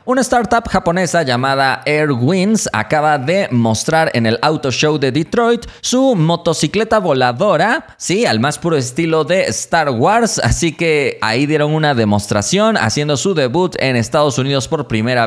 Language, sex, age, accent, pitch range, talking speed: Spanish, male, 30-49, Mexican, 120-175 Hz, 155 wpm